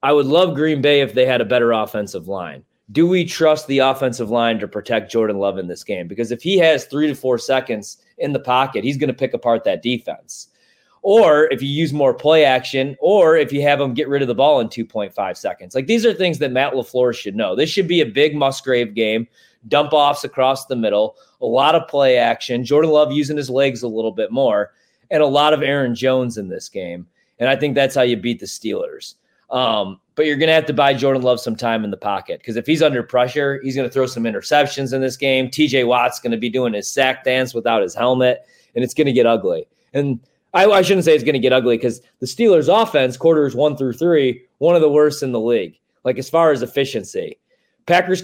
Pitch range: 120-150 Hz